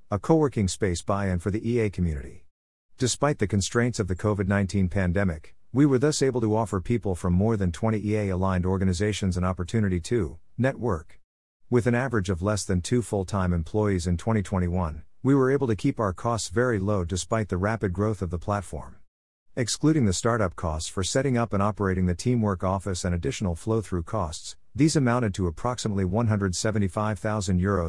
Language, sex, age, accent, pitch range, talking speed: English, male, 50-69, American, 90-115 Hz, 185 wpm